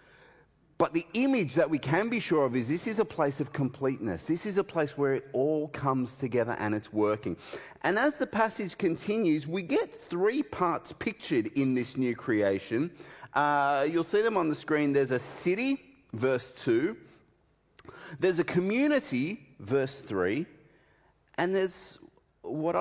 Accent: Australian